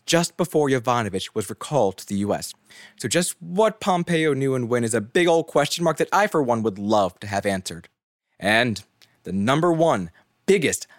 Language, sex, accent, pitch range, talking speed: English, male, American, 110-160 Hz, 190 wpm